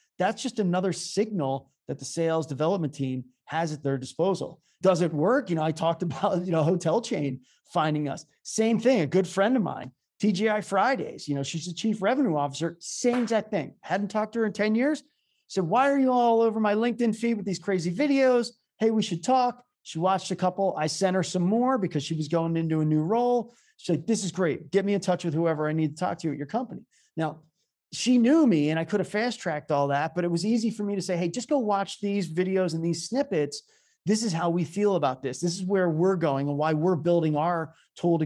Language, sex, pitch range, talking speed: English, male, 155-210 Hz, 240 wpm